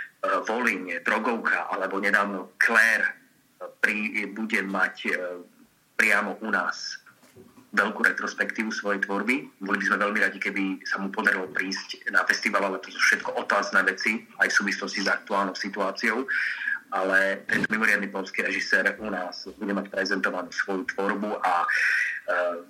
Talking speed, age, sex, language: 145 wpm, 30-49, male, Slovak